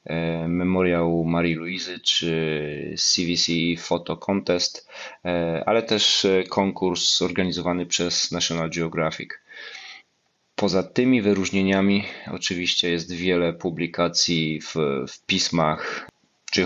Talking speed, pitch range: 90 wpm, 85-95 Hz